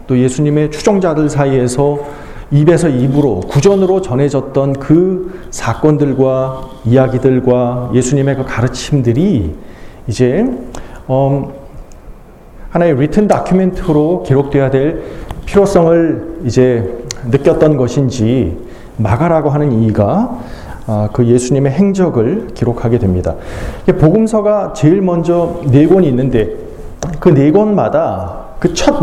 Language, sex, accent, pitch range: Korean, male, native, 125-180 Hz